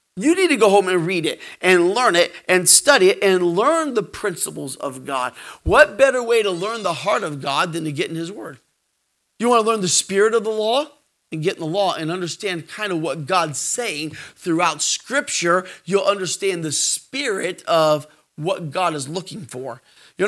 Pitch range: 175-240 Hz